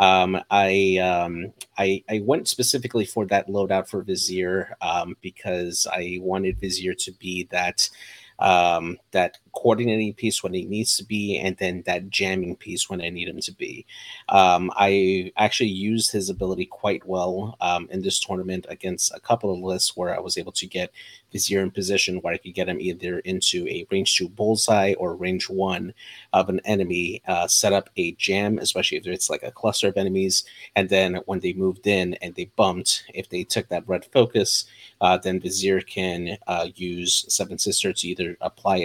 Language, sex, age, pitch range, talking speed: English, male, 30-49, 90-100 Hz, 190 wpm